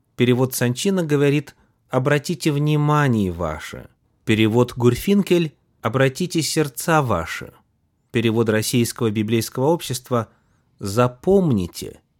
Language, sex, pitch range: Russian, male, 110-150 Hz